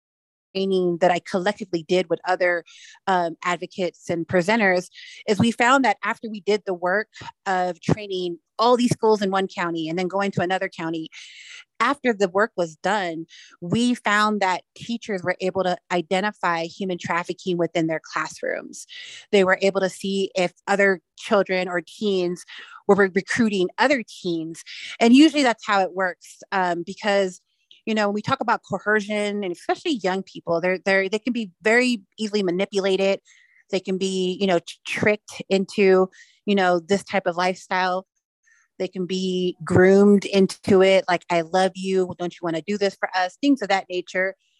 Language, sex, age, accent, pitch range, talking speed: English, female, 30-49, American, 180-210 Hz, 170 wpm